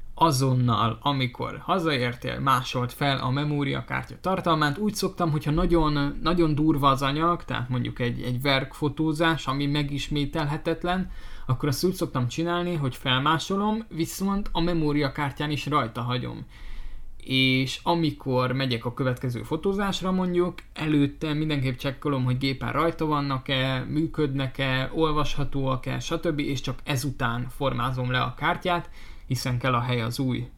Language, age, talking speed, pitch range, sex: Hungarian, 20-39, 130 wpm, 130-155 Hz, male